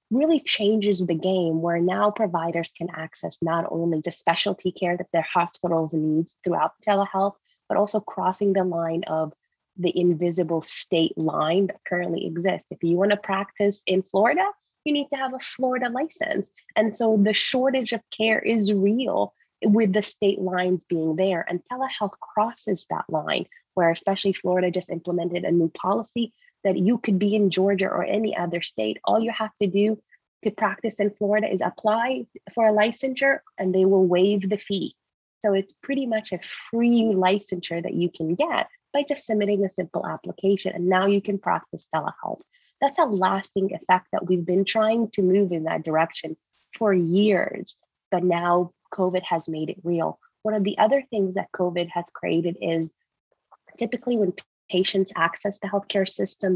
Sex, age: female, 20-39